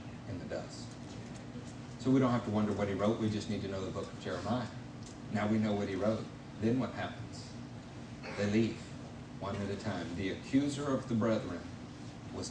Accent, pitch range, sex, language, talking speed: American, 105-125 Hz, male, English, 200 wpm